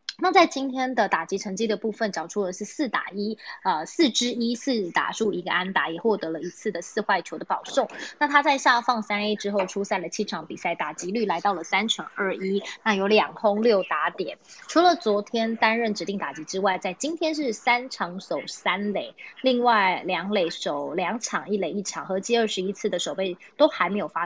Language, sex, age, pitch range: Chinese, female, 20-39, 190-225 Hz